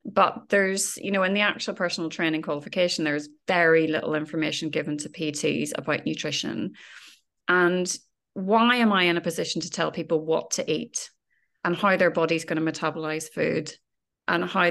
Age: 30-49